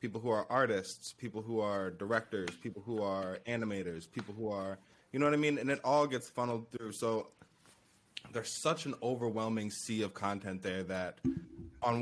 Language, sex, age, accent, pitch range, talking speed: English, male, 20-39, American, 100-120 Hz, 185 wpm